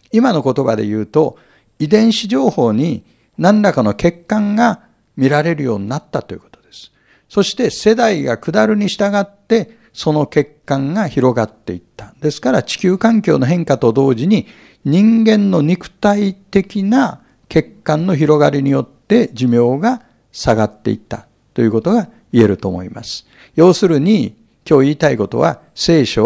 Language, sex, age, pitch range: Japanese, male, 60-79, 130-210 Hz